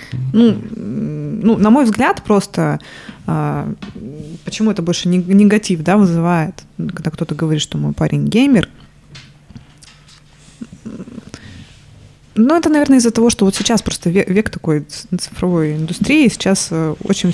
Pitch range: 160-205 Hz